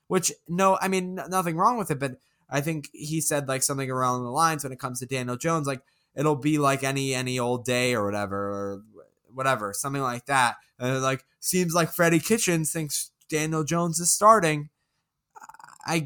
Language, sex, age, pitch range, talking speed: English, male, 10-29, 130-165 Hz, 195 wpm